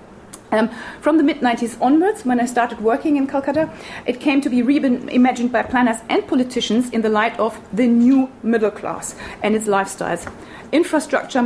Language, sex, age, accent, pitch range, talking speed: English, female, 30-49, German, 215-255 Hz, 170 wpm